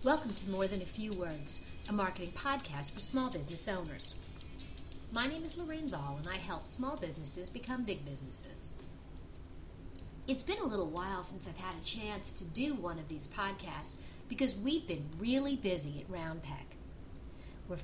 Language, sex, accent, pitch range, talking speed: English, female, American, 165-245 Hz, 170 wpm